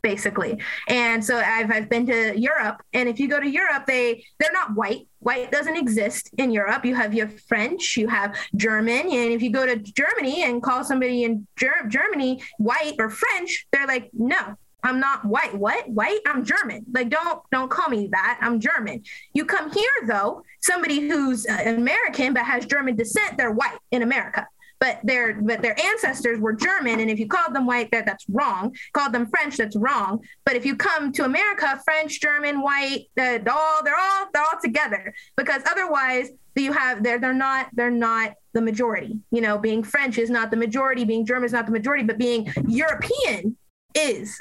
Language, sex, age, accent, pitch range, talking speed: English, female, 20-39, American, 230-280 Hz, 195 wpm